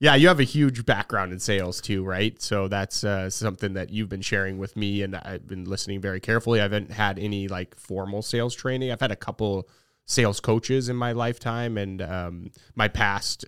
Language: English